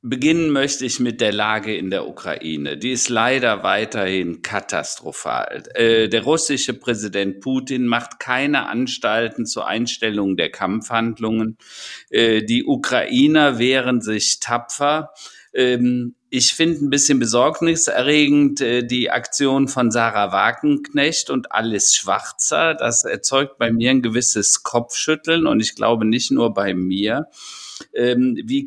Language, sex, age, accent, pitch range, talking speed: German, male, 50-69, German, 115-145 Hz, 120 wpm